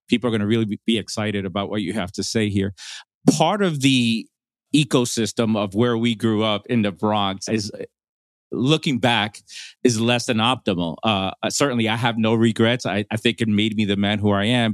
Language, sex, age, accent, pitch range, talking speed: English, male, 40-59, American, 105-125 Hz, 205 wpm